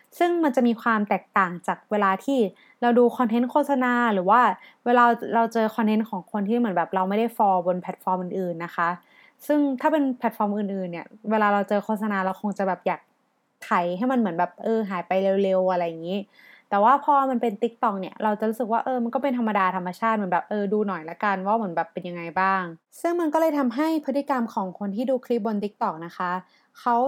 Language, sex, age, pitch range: Thai, female, 20-39, 190-250 Hz